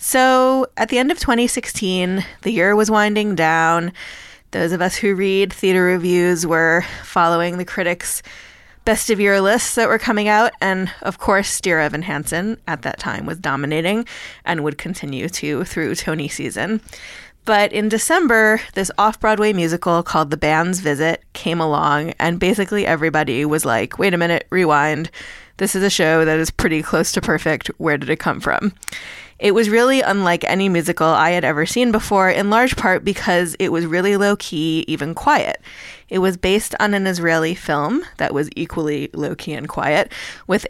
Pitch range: 170-210 Hz